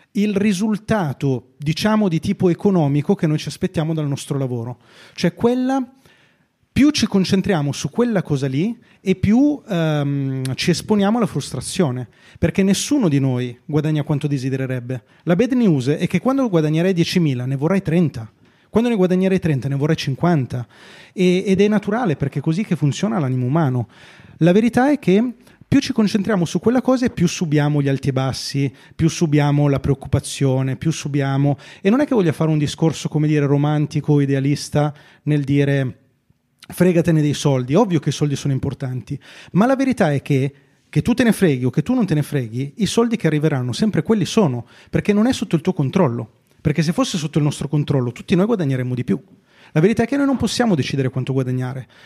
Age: 30-49